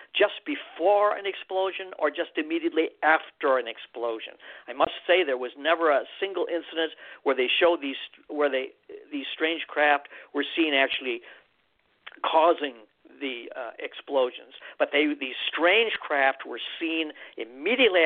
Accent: American